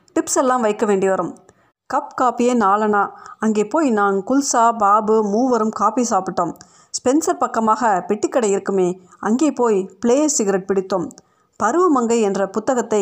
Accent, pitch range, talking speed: native, 195-255 Hz, 125 wpm